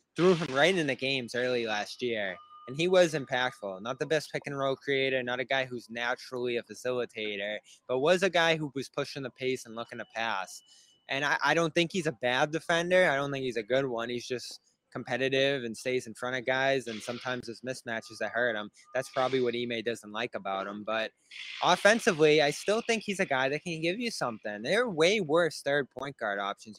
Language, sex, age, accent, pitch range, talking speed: English, male, 20-39, American, 120-160 Hz, 225 wpm